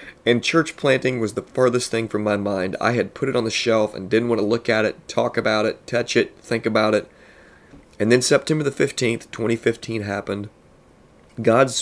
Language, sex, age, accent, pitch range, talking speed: English, male, 30-49, American, 110-130 Hz, 205 wpm